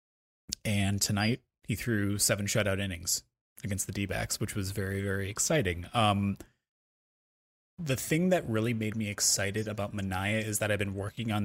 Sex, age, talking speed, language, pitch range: male, 20-39, 160 wpm, English, 100-115 Hz